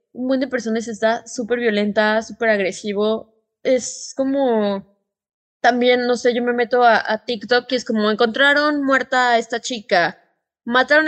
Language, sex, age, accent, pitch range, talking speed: Spanish, female, 20-39, Mexican, 215-270 Hz, 150 wpm